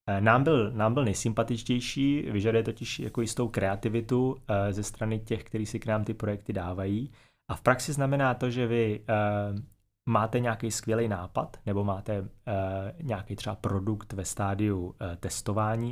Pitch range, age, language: 100-125 Hz, 30-49, Czech